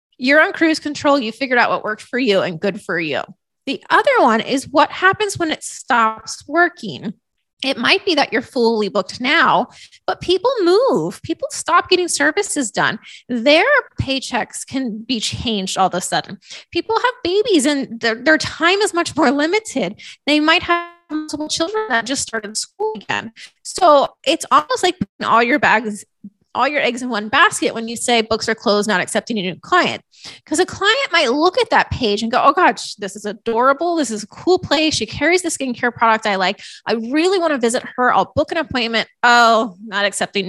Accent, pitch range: American, 220-340 Hz